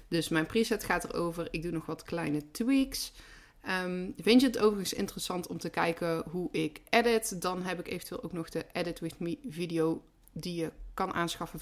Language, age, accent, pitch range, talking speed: Dutch, 30-49, Dutch, 160-195 Hz, 190 wpm